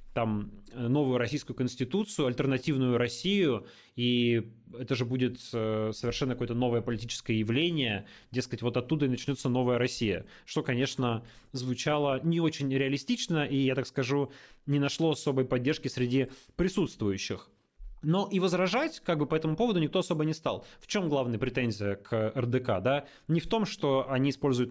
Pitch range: 120-150 Hz